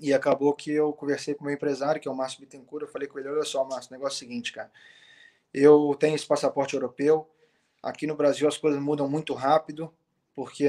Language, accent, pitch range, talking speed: Portuguese, Brazilian, 145-160 Hz, 230 wpm